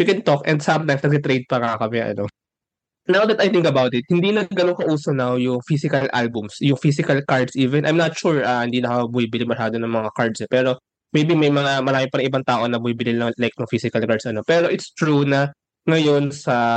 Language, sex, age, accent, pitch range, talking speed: Filipino, male, 20-39, native, 120-155 Hz, 220 wpm